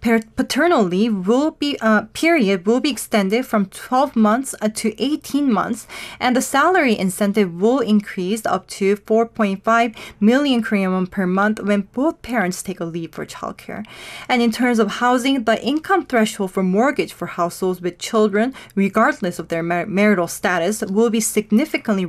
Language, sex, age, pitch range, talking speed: English, female, 20-39, 200-250 Hz, 165 wpm